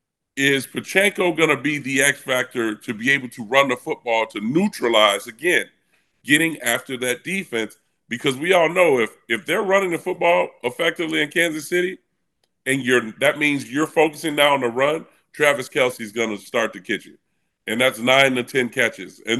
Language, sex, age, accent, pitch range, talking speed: English, female, 40-59, American, 120-150 Hz, 185 wpm